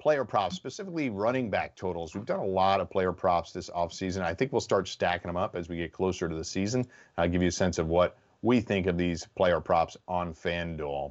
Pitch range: 85-110 Hz